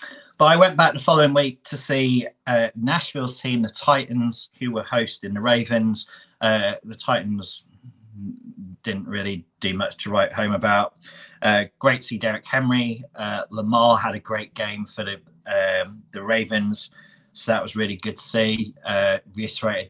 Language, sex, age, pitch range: English, male, 30-49, 110-140 Hz